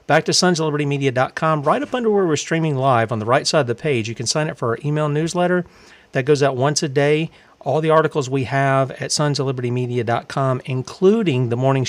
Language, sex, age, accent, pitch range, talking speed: English, male, 40-59, American, 130-160 Hz, 205 wpm